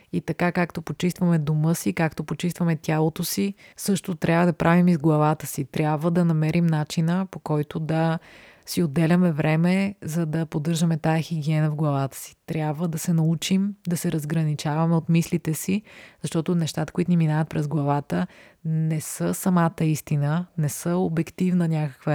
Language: Bulgarian